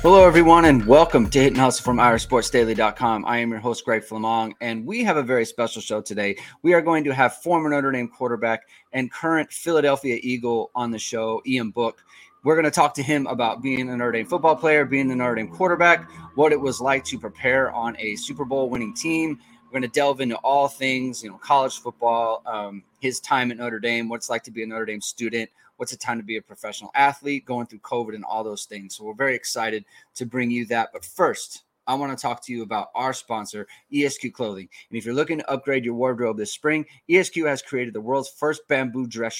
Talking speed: 230 wpm